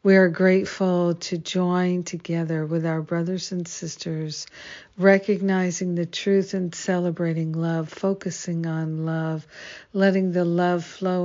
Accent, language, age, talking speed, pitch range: American, English, 60-79, 130 wpm, 160-185 Hz